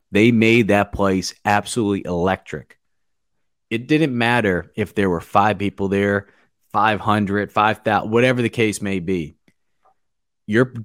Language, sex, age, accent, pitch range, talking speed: English, male, 30-49, American, 95-115 Hz, 125 wpm